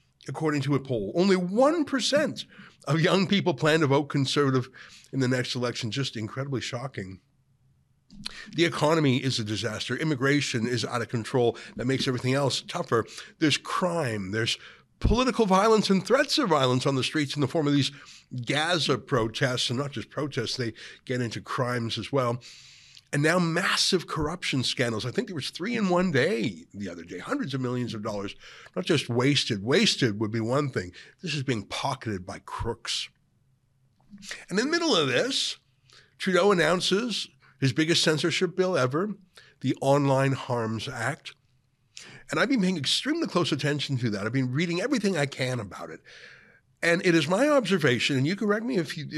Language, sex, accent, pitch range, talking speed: English, male, American, 125-175 Hz, 175 wpm